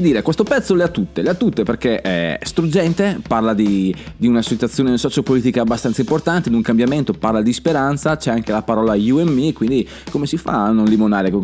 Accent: native